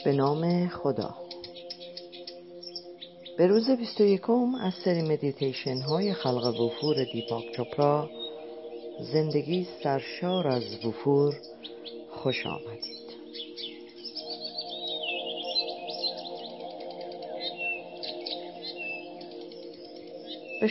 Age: 50-69